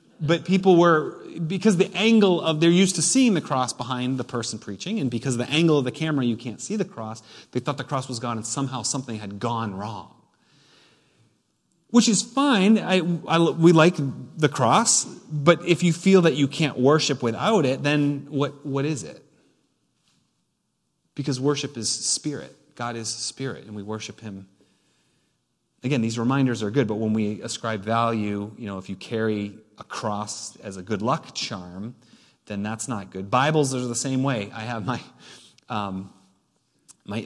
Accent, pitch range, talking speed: American, 110-145 Hz, 180 wpm